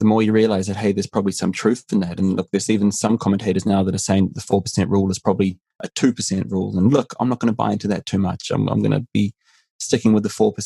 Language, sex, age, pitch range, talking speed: English, male, 20-39, 95-120 Hz, 280 wpm